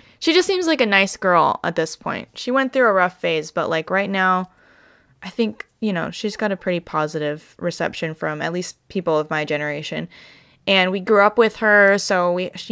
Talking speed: 210 wpm